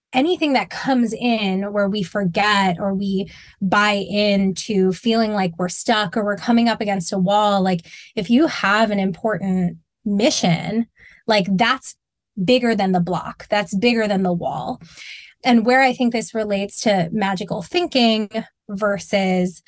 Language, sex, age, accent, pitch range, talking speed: English, female, 20-39, American, 190-235 Hz, 150 wpm